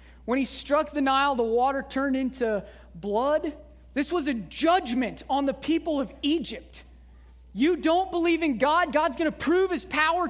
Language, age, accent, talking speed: English, 20-39, American, 175 wpm